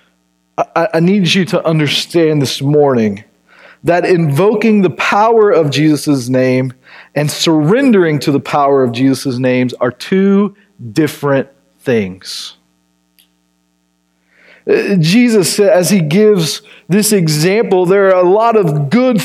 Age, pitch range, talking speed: 40-59, 165-240 Hz, 120 wpm